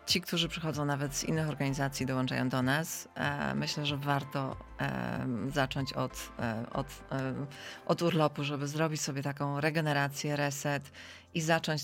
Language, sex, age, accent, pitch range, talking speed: Polish, female, 30-49, native, 130-160 Hz, 130 wpm